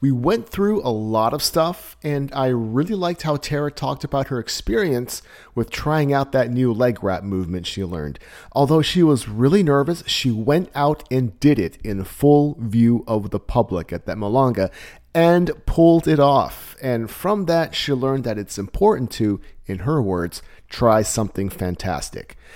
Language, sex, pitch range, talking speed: English, male, 105-150 Hz, 175 wpm